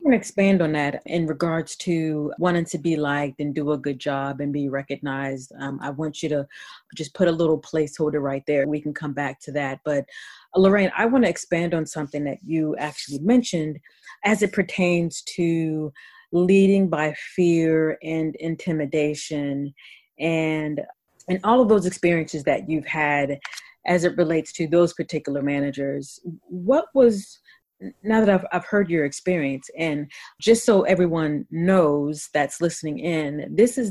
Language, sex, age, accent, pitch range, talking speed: English, female, 30-49, American, 145-175 Hz, 165 wpm